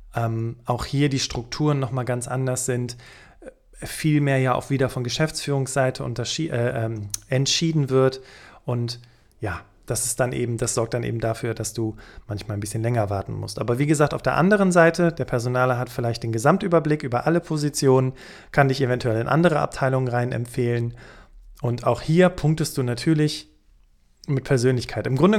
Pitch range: 120-150 Hz